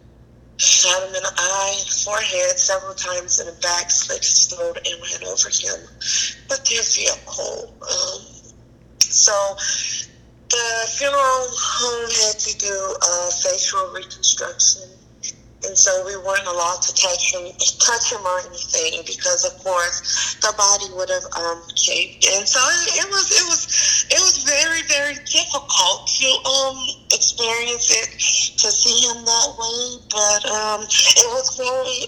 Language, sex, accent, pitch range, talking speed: English, female, American, 195-305 Hz, 150 wpm